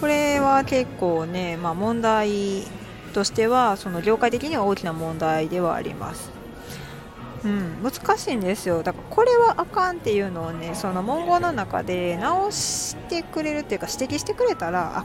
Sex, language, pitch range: female, Japanese, 180-275 Hz